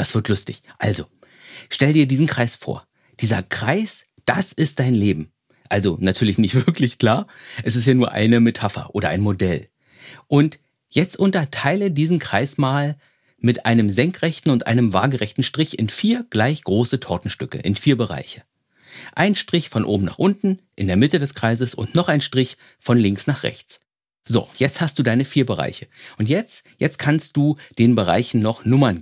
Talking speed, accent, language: 175 wpm, German, German